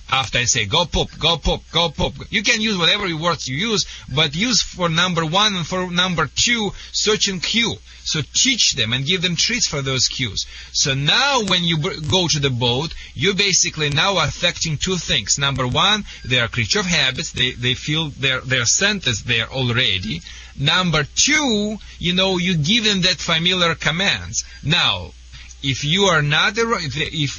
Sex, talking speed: male, 185 wpm